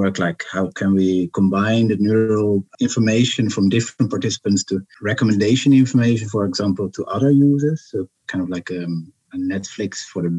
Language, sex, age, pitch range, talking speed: English, male, 50-69, 95-125 Hz, 160 wpm